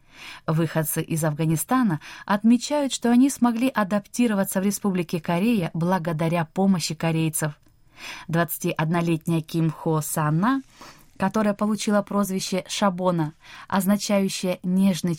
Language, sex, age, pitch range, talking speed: Russian, female, 20-39, 165-215 Hz, 95 wpm